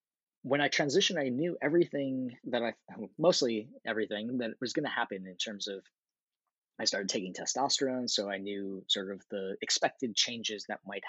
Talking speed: 175 wpm